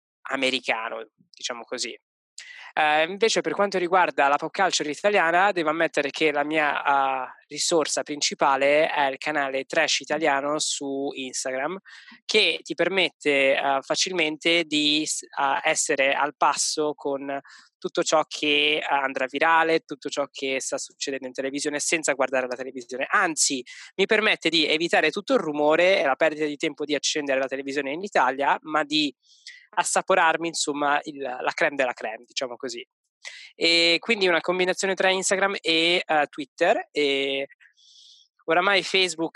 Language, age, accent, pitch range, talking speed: Italian, 20-39, native, 140-165 Hz, 145 wpm